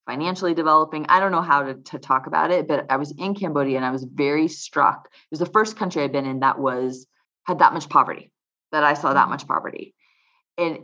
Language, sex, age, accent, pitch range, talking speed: English, female, 20-39, American, 145-180 Hz, 235 wpm